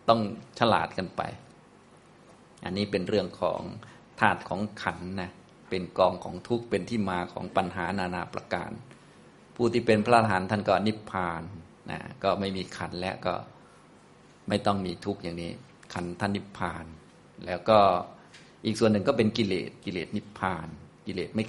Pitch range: 90-110 Hz